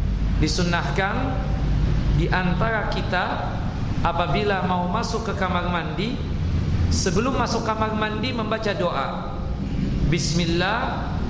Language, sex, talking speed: Indonesian, male, 90 wpm